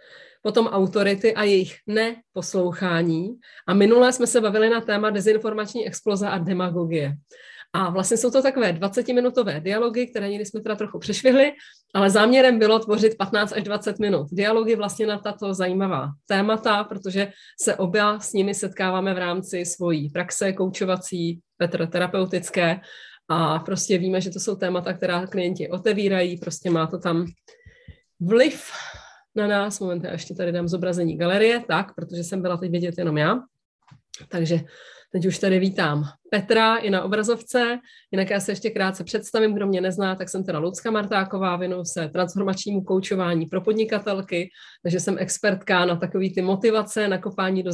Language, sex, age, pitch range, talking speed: Czech, female, 30-49, 180-215 Hz, 160 wpm